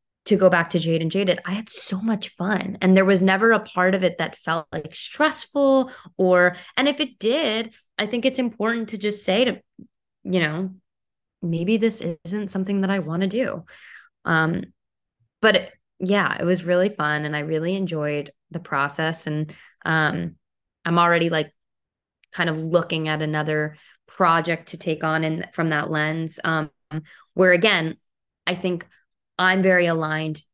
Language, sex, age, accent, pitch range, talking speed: English, female, 20-39, American, 155-190 Hz, 175 wpm